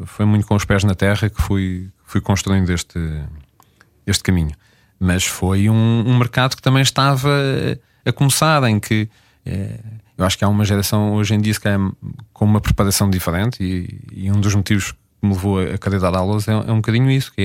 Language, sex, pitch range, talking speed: Portuguese, male, 100-135 Hz, 205 wpm